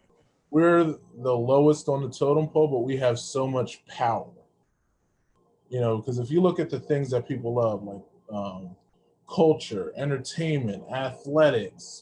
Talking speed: 150 wpm